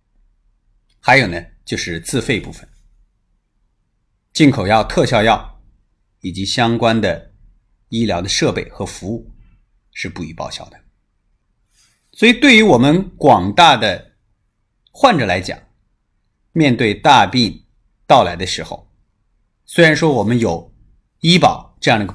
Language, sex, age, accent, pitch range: Chinese, male, 30-49, native, 95-115 Hz